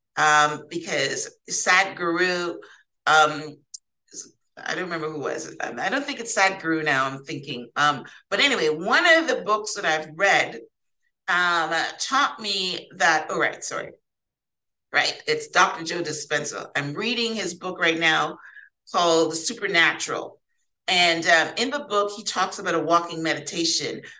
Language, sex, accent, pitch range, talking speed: English, female, American, 165-235 Hz, 150 wpm